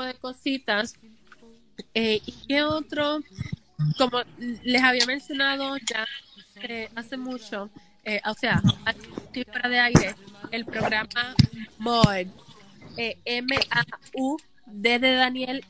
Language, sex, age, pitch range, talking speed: Spanish, female, 20-39, 220-265 Hz, 120 wpm